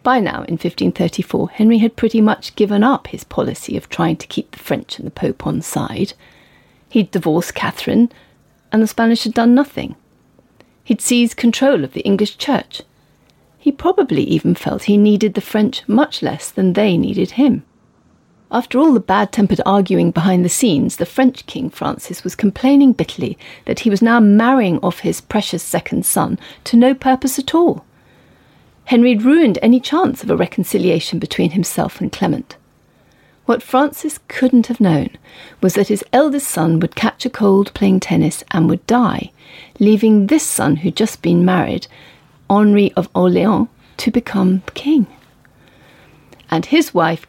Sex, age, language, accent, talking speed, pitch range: female, 40-59, English, British, 165 wpm, 185-250 Hz